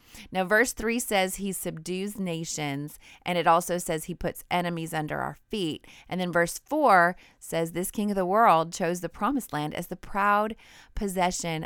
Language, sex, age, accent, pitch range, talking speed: English, female, 30-49, American, 160-200 Hz, 180 wpm